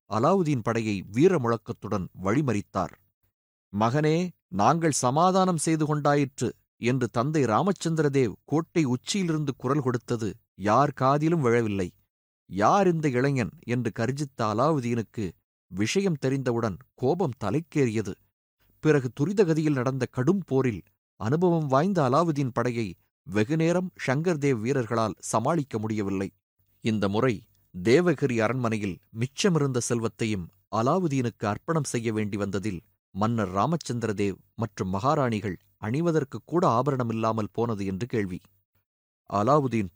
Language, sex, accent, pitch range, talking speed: Tamil, male, native, 105-145 Hz, 100 wpm